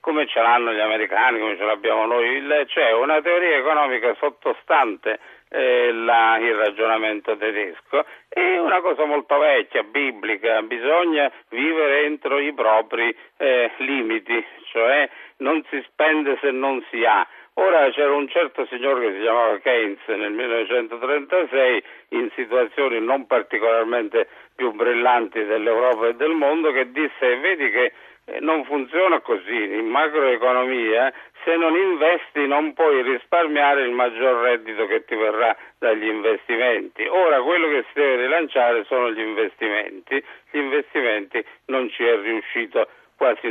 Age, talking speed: 50-69, 140 wpm